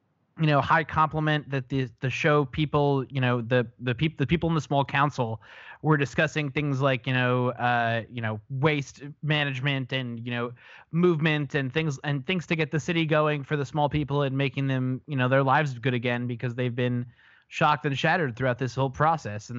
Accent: American